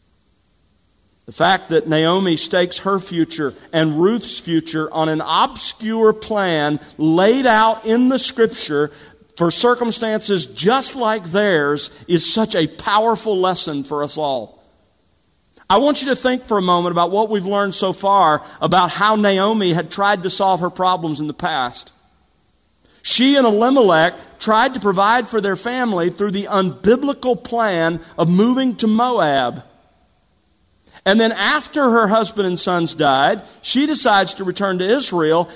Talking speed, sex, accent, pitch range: 150 wpm, male, American, 150-215 Hz